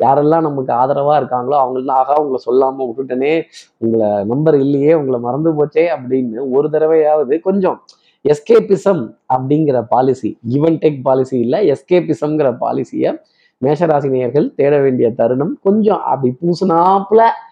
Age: 20-39